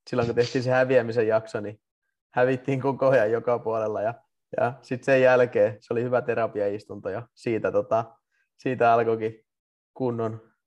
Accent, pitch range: native, 105-135 Hz